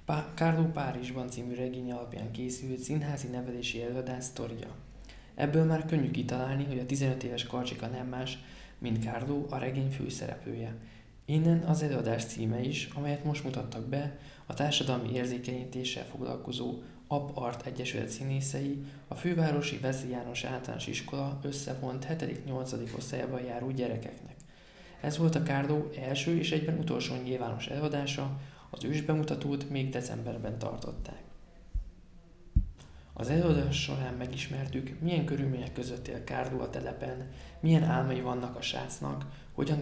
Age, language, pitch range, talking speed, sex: 20-39, Hungarian, 125-145 Hz, 130 wpm, male